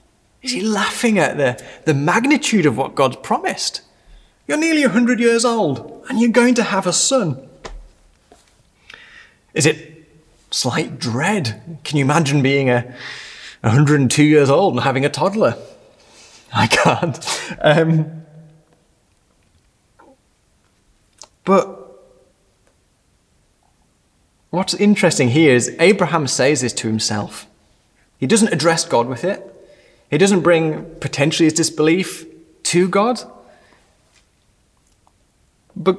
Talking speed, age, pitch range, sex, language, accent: 110 wpm, 30-49, 130-200 Hz, male, English, British